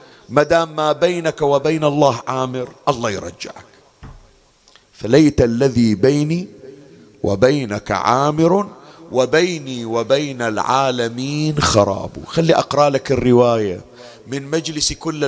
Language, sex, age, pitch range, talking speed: Arabic, male, 40-59, 120-160 Hz, 95 wpm